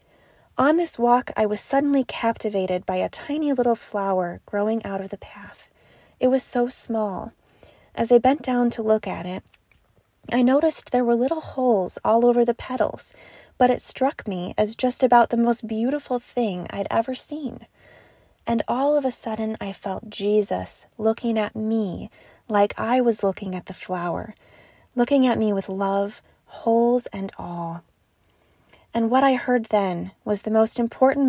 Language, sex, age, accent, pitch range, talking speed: English, female, 20-39, American, 200-245 Hz, 170 wpm